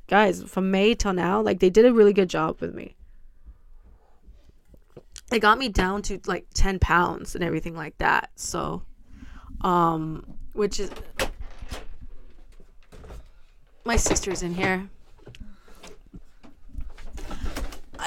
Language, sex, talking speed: English, female, 115 wpm